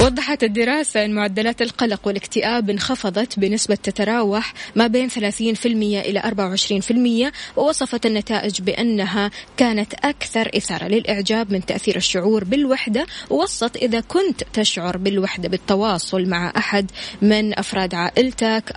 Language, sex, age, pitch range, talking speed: Arabic, female, 20-39, 200-235 Hz, 115 wpm